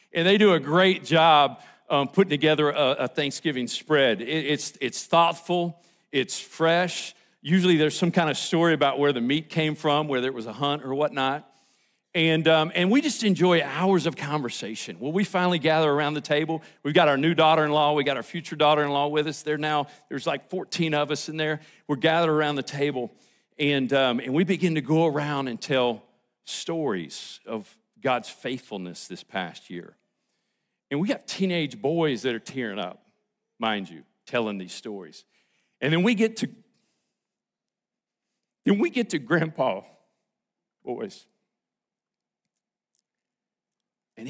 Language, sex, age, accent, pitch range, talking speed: English, male, 50-69, American, 145-195 Hz, 165 wpm